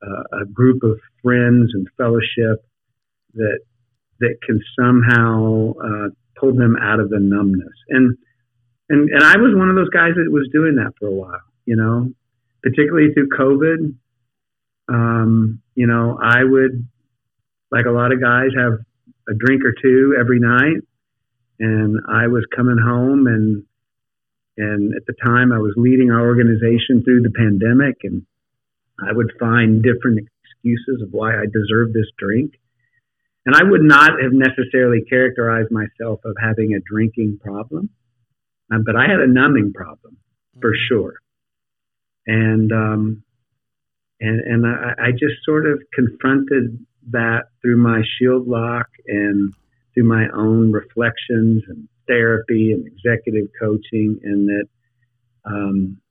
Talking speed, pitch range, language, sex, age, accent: 145 wpm, 110-125 Hz, English, male, 50-69, American